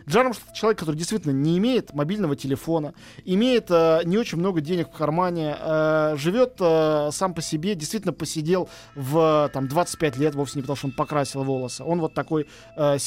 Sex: male